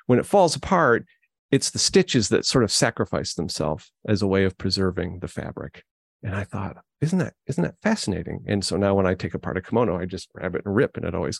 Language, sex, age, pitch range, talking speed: English, male, 40-59, 95-130 Hz, 235 wpm